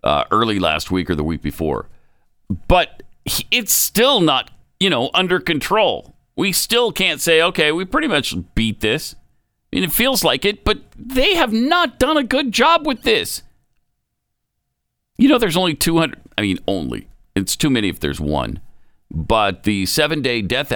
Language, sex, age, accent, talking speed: English, male, 50-69, American, 175 wpm